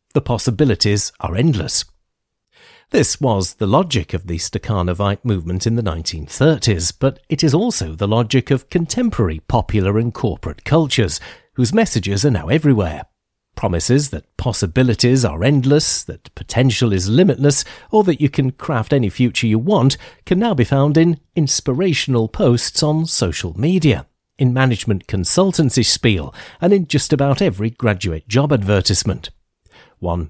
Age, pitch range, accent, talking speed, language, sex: 40-59, 100-145 Hz, British, 145 wpm, English, male